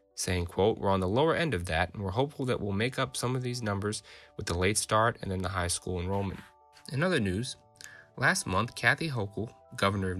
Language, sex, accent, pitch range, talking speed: English, male, American, 90-110 Hz, 230 wpm